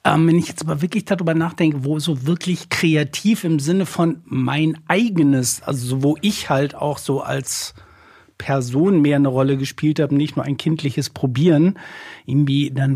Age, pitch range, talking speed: 60-79, 130-155 Hz, 170 wpm